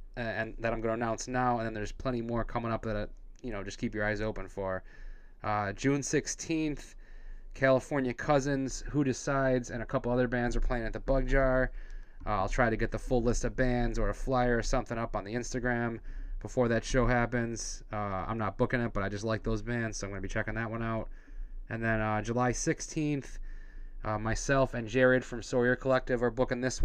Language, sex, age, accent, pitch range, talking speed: English, male, 20-39, American, 110-130 Hz, 220 wpm